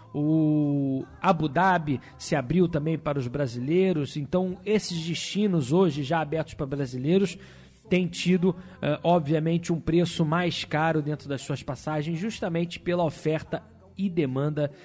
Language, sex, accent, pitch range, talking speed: Portuguese, male, Brazilian, 140-175 Hz, 135 wpm